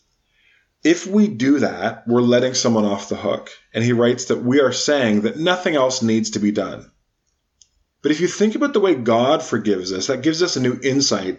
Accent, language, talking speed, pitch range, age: American, English, 210 wpm, 95-135 Hz, 30-49